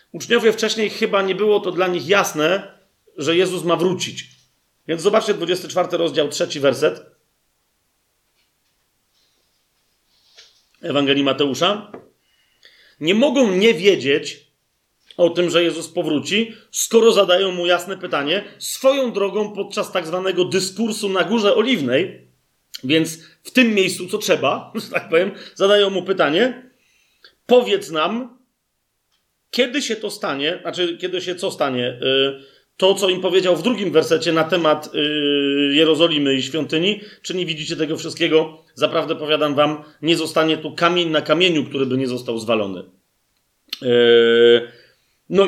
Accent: native